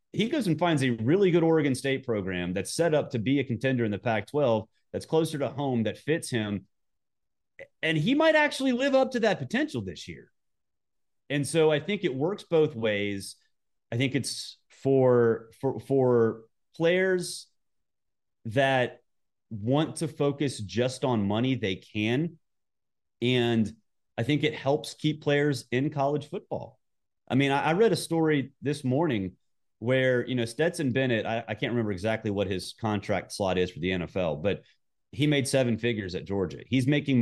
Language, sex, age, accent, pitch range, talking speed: English, male, 30-49, American, 110-145 Hz, 175 wpm